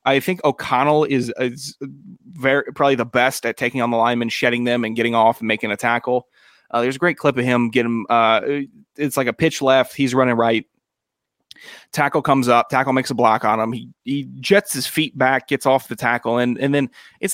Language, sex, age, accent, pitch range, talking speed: English, male, 20-39, American, 120-155 Hz, 220 wpm